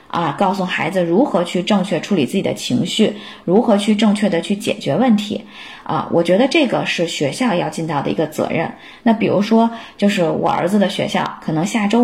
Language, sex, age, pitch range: Chinese, female, 20-39, 185-240 Hz